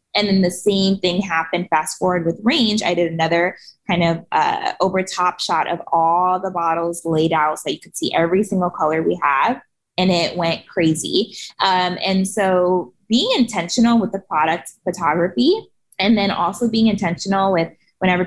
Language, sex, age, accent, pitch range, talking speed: English, female, 20-39, American, 165-195 Hz, 175 wpm